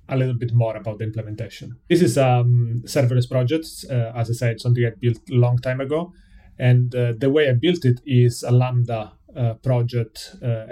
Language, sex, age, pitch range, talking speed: English, male, 30-49, 115-130 Hz, 195 wpm